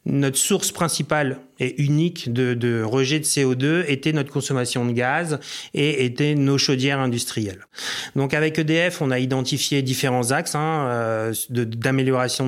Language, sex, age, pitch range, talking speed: French, male, 30-49, 125-150 Hz, 150 wpm